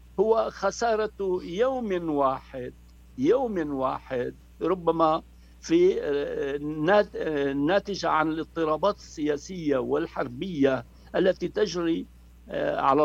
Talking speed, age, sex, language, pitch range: 75 wpm, 60-79, male, Arabic, 125-185 Hz